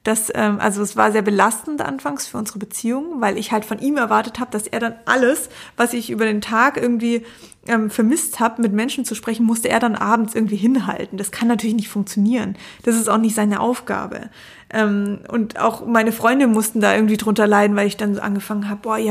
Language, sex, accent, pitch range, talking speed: German, female, German, 215-240 Hz, 205 wpm